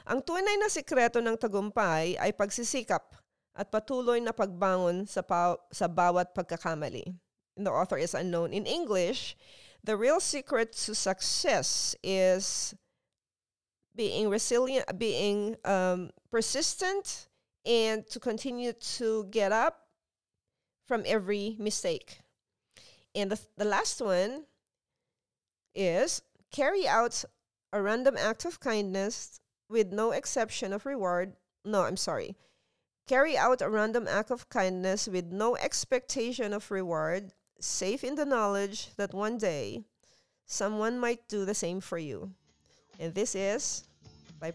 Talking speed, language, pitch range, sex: 125 wpm, English, 185-235 Hz, female